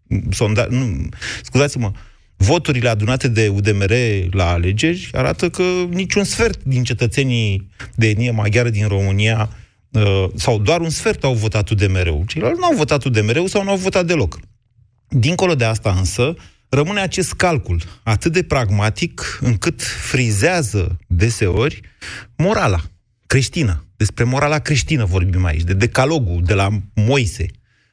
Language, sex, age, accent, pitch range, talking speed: Romanian, male, 30-49, native, 100-135 Hz, 130 wpm